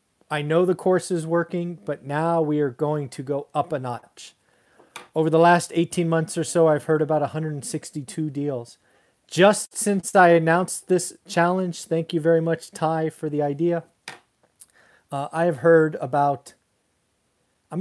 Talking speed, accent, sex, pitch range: 160 wpm, American, male, 150-185 Hz